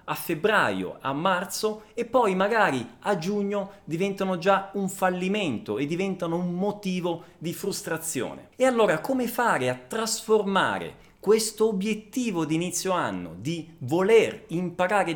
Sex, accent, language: male, native, Italian